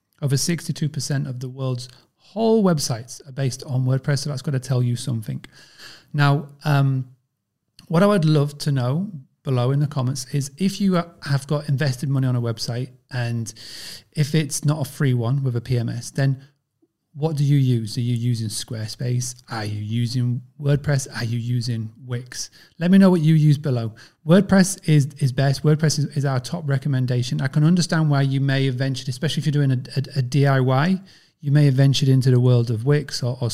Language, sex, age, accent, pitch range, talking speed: English, male, 30-49, British, 125-150 Hz, 200 wpm